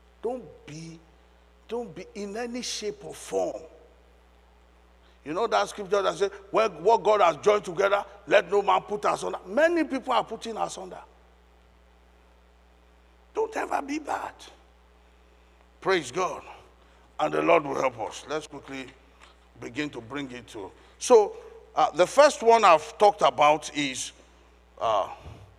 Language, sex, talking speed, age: English, male, 140 wpm, 50-69